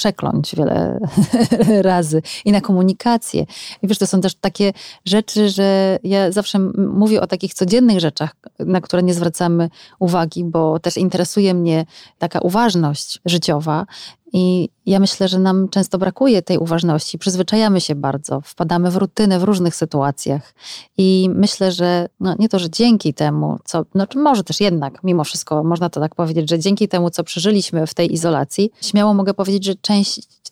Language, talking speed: Polish, 165 wpm